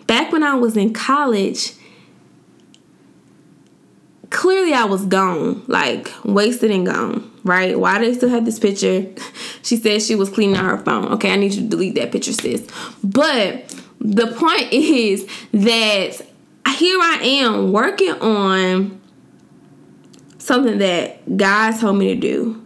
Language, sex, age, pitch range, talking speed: English, female, 20-39, 205-260 Hz, 150 wpm